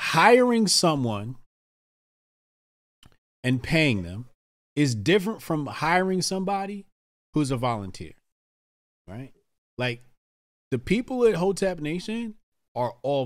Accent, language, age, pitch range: American, English, 30-49, 95-145 Hz